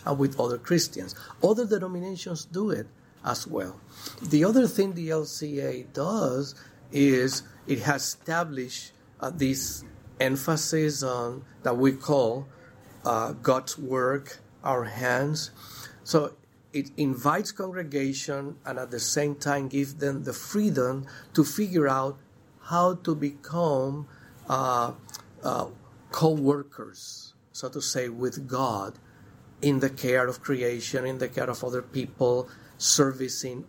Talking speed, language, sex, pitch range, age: 125 wpm, English, male, 125-150 Hz, 50-69